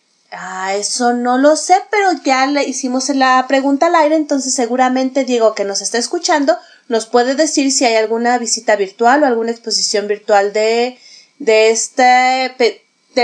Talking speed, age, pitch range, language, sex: 170 wpm, 30-49, 215-305 Hz, Spanish, female